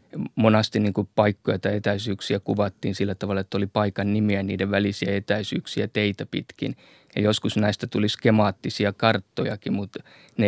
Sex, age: male, 20-39